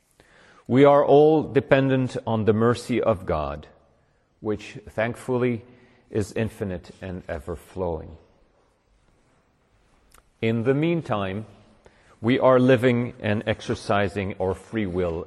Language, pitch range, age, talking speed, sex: English, 95-125 Hz, 40-59, 105 wpm, male